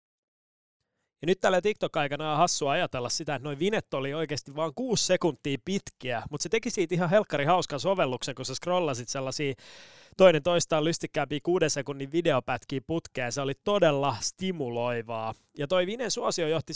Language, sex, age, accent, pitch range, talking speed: Finnish, male, 20-39, native, 130-170 Hz, 160 wpm